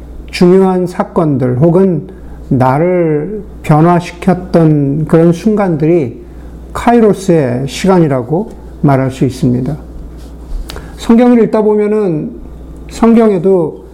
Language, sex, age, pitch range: Korean, male, 50-69, 140-185 Hz